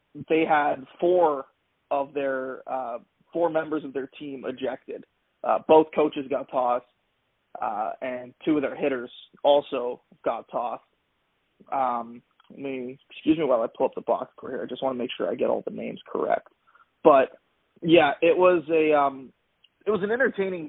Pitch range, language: 130-160 Hz, English